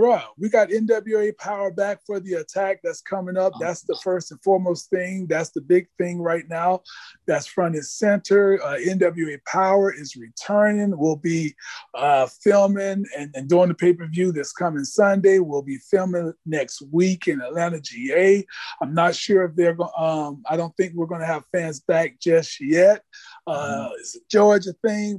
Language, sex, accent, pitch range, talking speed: English, male, American, 155-195 Hz, 180 wpm